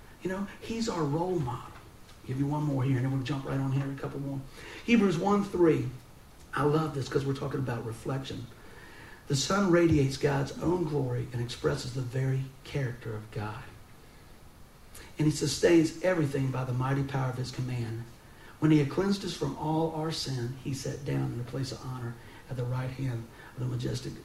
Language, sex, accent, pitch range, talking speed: English, male, American, 125-170 Hz, 200 wpm